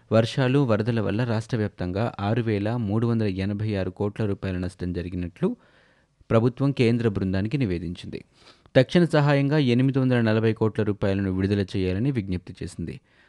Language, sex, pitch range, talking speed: Telugu, male, 100-125 Hz, 100 wpm